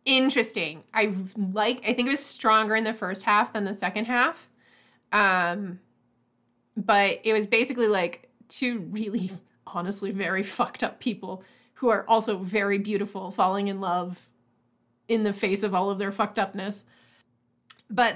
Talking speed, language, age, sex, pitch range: 155 wpm, English, 20-39, female, 180-220 Hz